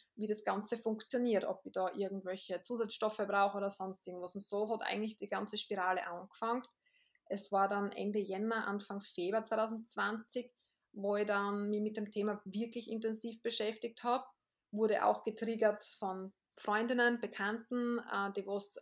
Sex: female